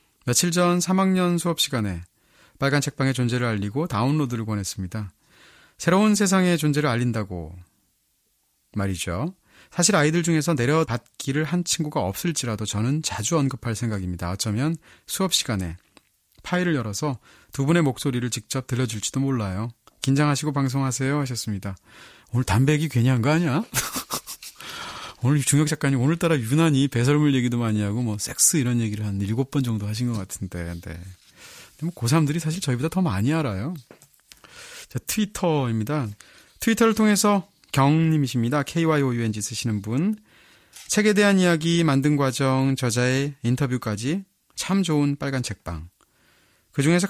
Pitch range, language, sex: 110-155 Hz, English, male